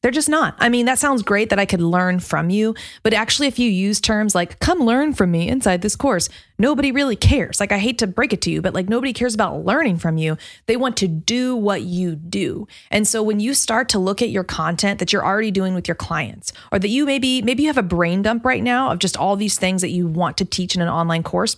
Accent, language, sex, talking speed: American, English, female, 270 wpm